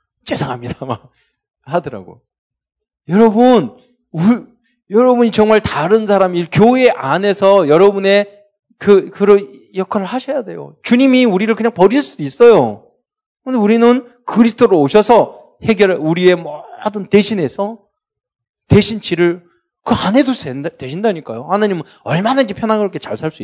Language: Korean